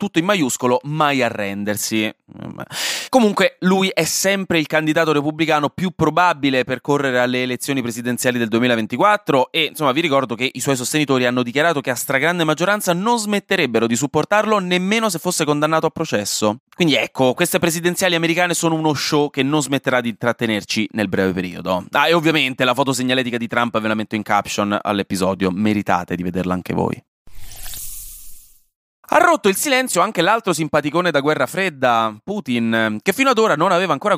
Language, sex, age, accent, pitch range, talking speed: Italian, male, 20-39, native, 115-175 Hz, 170 wpm